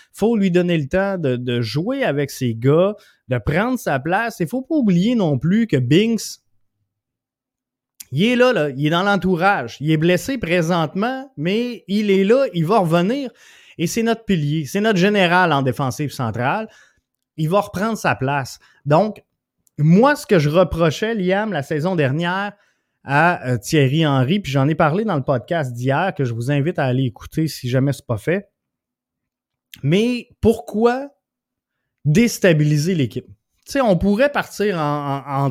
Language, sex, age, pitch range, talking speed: French, male, 20-39, 140-200 Hz, 175 wpm